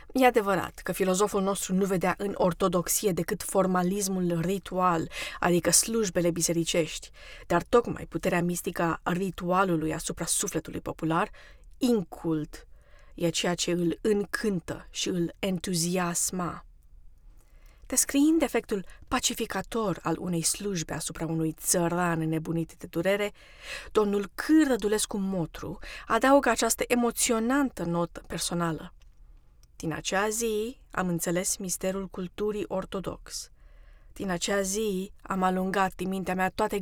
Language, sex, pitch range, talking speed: Romanian, female, 165-200 Hz, 115 wpm